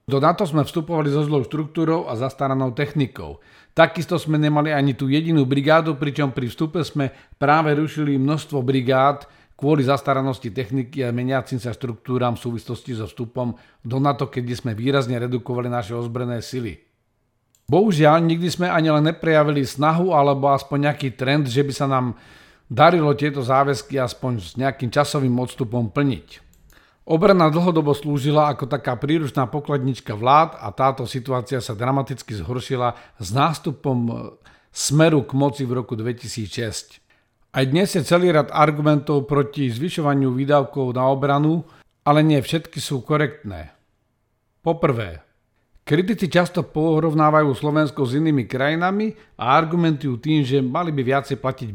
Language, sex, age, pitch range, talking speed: Slovak, male, 40-59, 125-150 Hz, 145 wpm